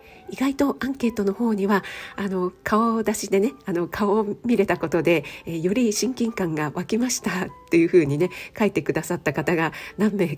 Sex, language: female, Japanese